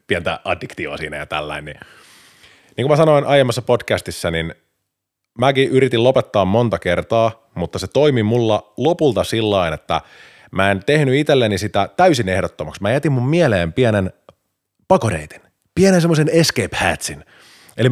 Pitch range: 90-135 Hz